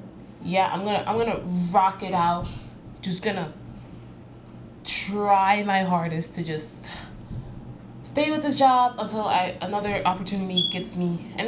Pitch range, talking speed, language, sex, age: 170-235 Hz, 135 wpm, English, female, 20-39